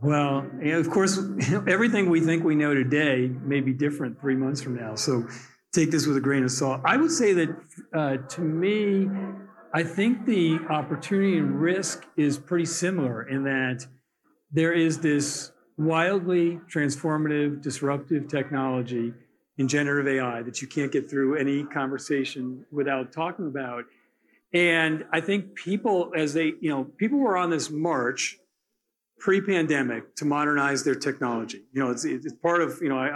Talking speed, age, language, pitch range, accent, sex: 160 wpm, 50-69, English, 135-170 Hz, American, male